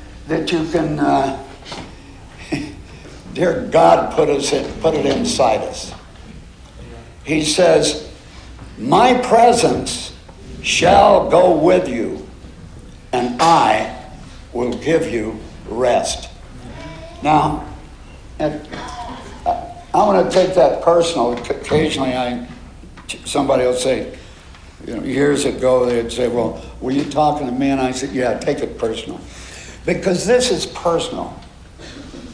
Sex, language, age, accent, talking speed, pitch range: male, English, 60-79, American, 115 wpm, 130-175 Hz